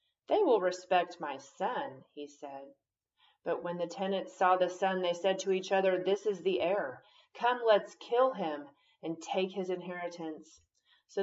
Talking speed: 170 wpm